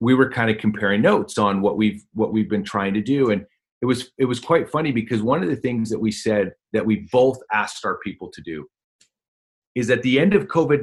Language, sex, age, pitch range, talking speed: English, male, 40-59, 105-130 Hz, 245 wpm